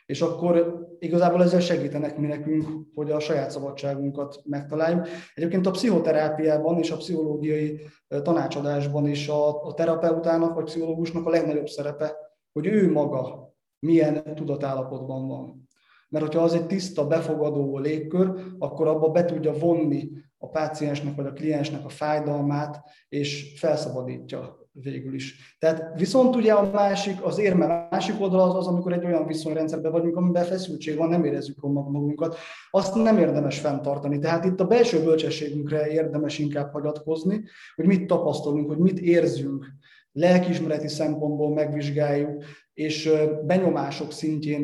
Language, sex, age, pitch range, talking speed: Hungarian, male, 20-39, 145-170 Hz, 140 wpm